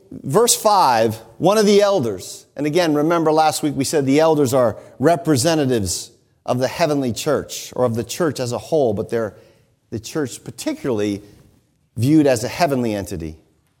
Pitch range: 130-205 Hz